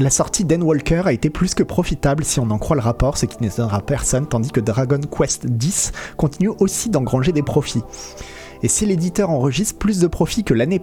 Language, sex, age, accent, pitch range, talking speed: French, male, 30-49, French, 120-165 Hz, 205 wpm